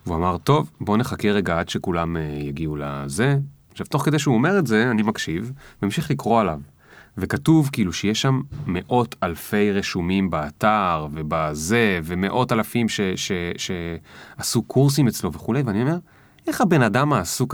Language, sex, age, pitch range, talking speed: Hebrew, male, 30-49, 90-135 Hz, 150 wpm